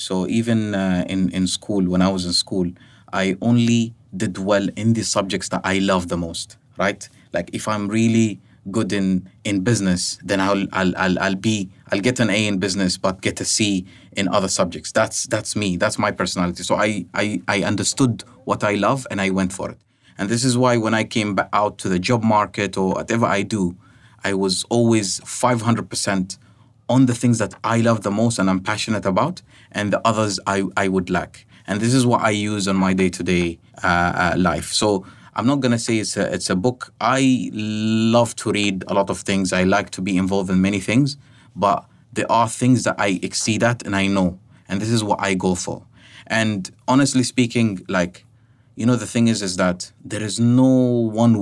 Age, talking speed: 30-49, 210 wpm